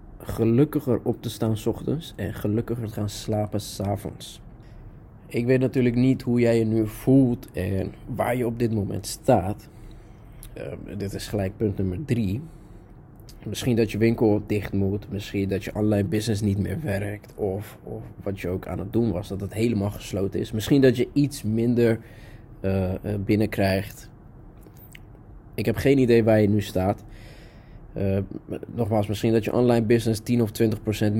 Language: Dutch